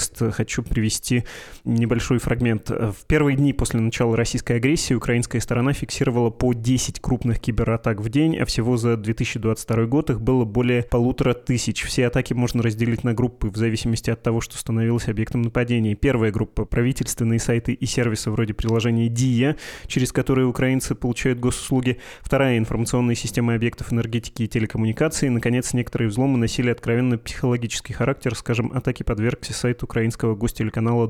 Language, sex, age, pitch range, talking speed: Russian, male, 20-39, 115-130 Hz, 155 wpm